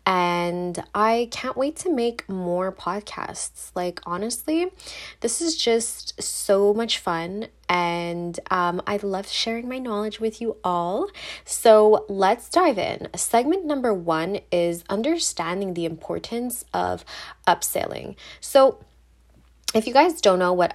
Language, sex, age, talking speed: English, female, 20-39, 135 wpm